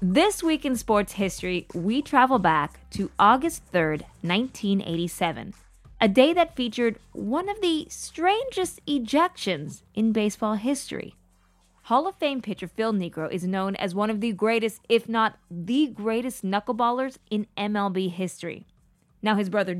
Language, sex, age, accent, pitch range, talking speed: English, female, 20-39, American, 180-275 Hz, 145 wpm